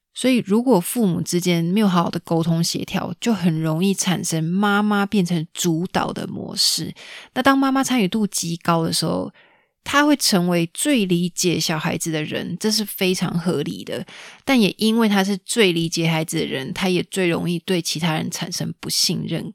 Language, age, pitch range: Chinese, 20-39, 175-215 Hz